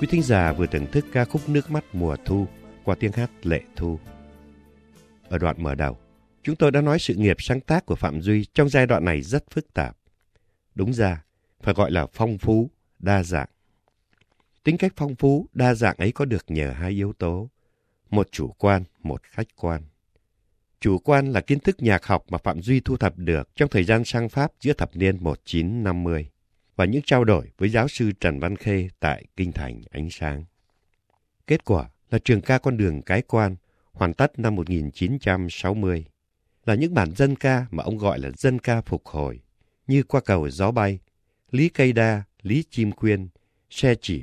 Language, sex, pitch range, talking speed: Vietnamese, male, 85-120 Hz, 200 wpm